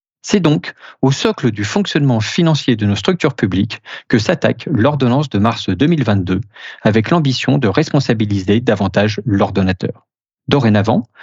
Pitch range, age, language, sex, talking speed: 105-145 Hz, 40-59, French, male, 130 wpm